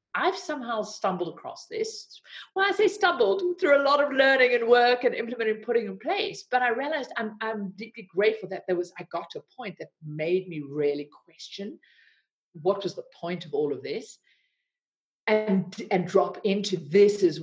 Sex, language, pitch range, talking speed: female, English, 175-255 Hz, 195 wpm